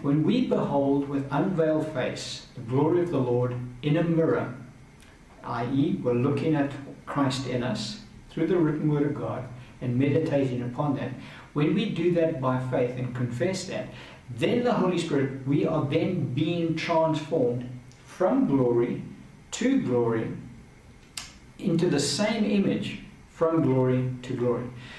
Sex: male